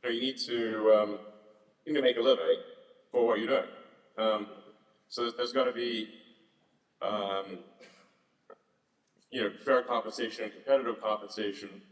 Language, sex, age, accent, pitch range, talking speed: English, male, 30-49, American, 100-120 Hz, 155 wpm